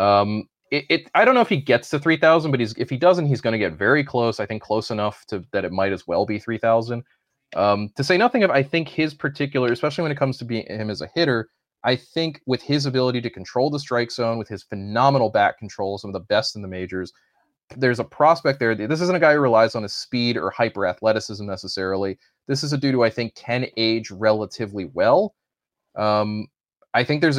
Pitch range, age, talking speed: 105-140 Hz, 30-49, 235 wpm